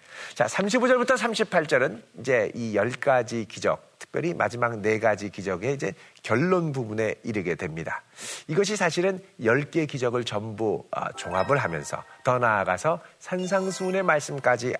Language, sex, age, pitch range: Korean, male, 40-59, 125-190 Hz